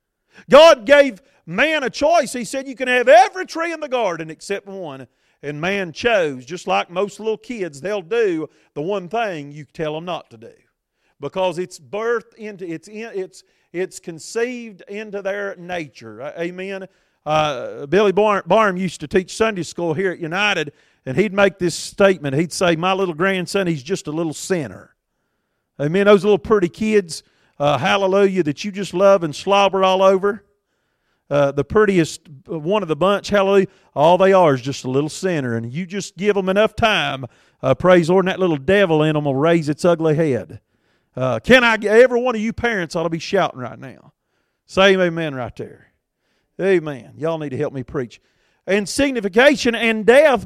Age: 40-59